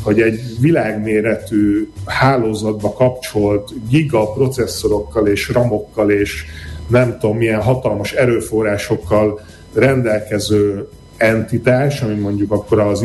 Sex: male